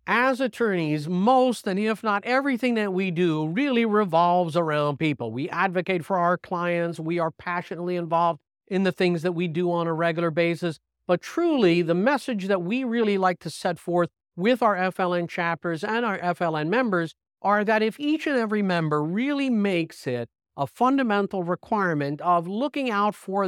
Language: English